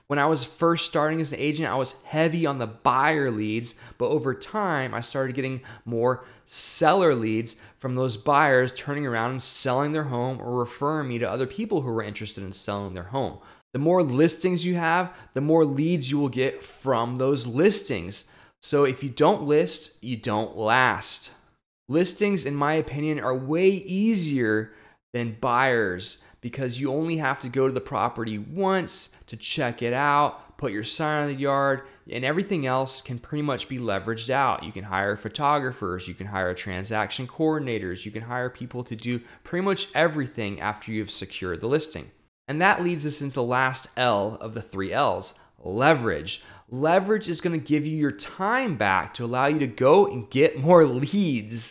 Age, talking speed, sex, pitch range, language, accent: 20-39, 185 wpm, male, 115-155 Hz, English, American